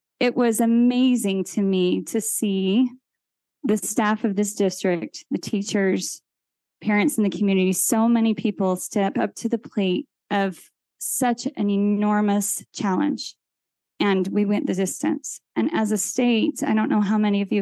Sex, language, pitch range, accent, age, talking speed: female, English, 195-230 Hz, American, 20-39, 160 wpm